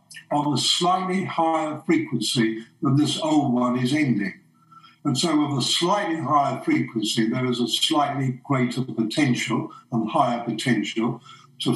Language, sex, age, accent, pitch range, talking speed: English, male, 60-79, British, 120-160 Hz, 145 wpm